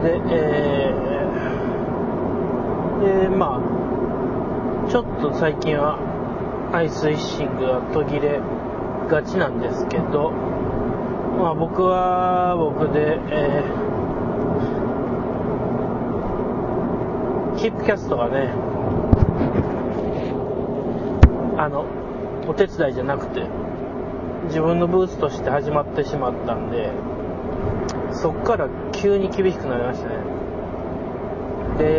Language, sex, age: Japanese, male, 30-49